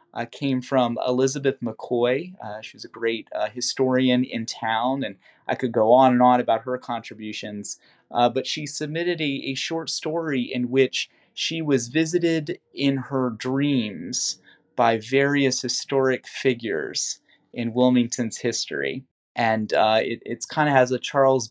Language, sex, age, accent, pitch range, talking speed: English, male, 30-49, American, 115-135 Hz, 150 wpm